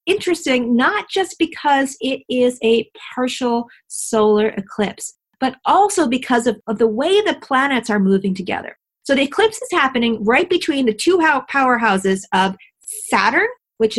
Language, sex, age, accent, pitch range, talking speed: English, female, 40-59, American, 205-280 Hz, 150 wpm